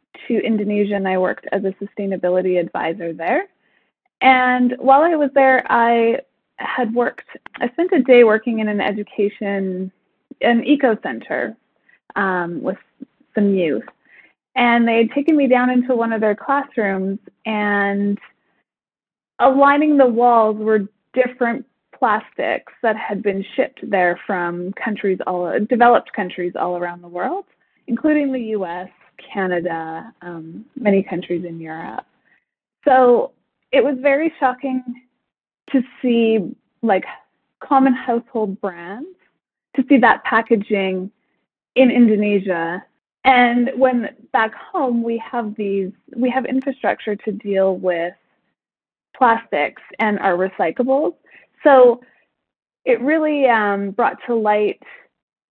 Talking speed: 120 wpm